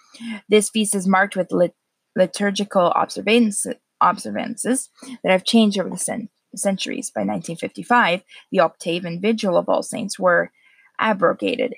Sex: female